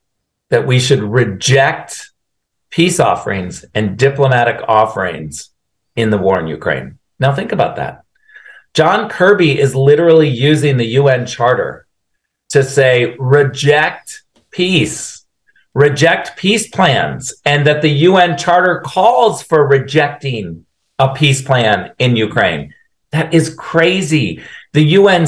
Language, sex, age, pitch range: English, male, 50-69, 125-165 Hz